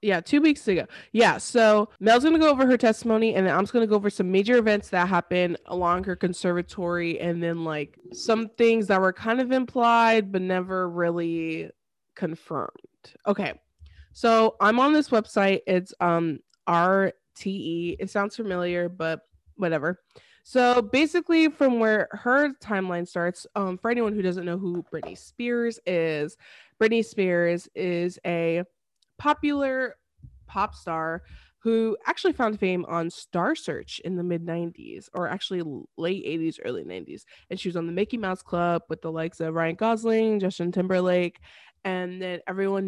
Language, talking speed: English, 165 wpm